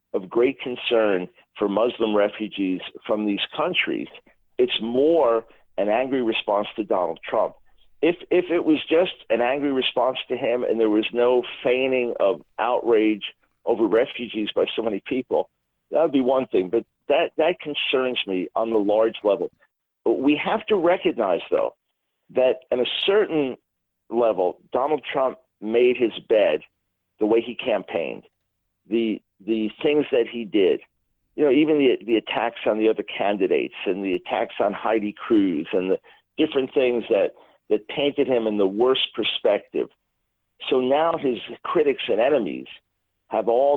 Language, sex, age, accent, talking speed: English, male, 50-69, American, 160 wpm